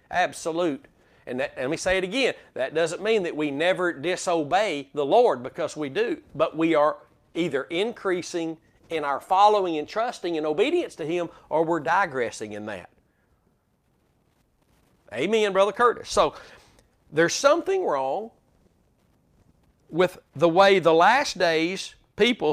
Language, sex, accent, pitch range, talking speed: English, male, American, 170-240 Hz, 140 wpm